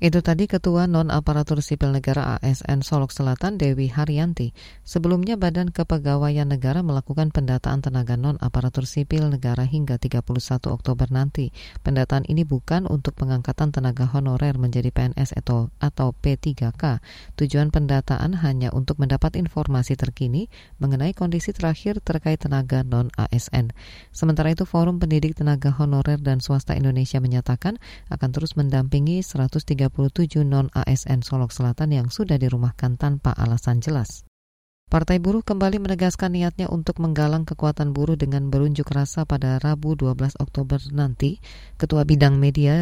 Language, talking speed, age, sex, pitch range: Indonesian, 130 wpm, 20-39, female, 130-155 Hz